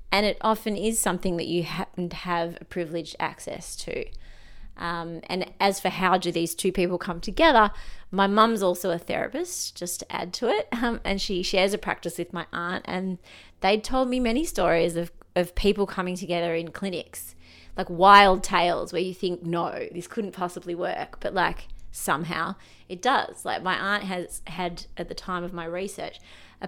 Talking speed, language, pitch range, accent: 190 wpm, English, 175-210 Hz, Australian